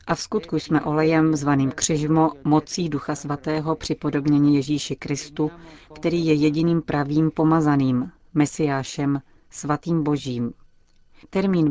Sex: female